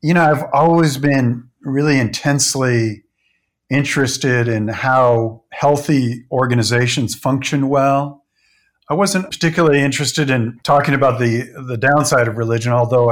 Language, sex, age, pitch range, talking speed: English, male, 50-69, 120-145 Hz, 125 wpm